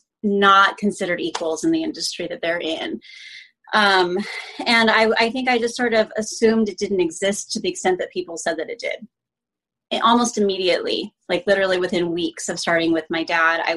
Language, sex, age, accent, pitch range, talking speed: English, female, 30-49, American, 180-230 Hz, 185 wpm